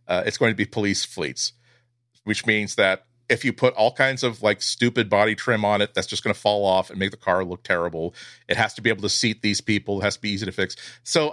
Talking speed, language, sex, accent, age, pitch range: 270 wpm, English, male, American, 40-59, 100-125 Hz